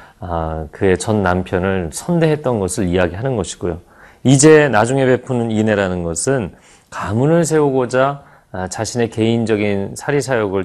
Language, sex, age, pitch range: Korean, male, 30-49, 95-135 Hz